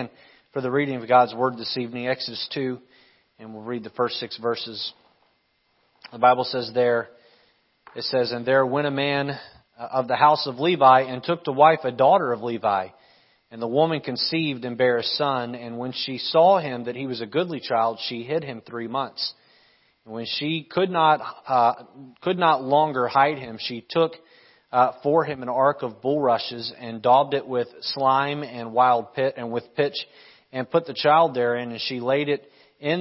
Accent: American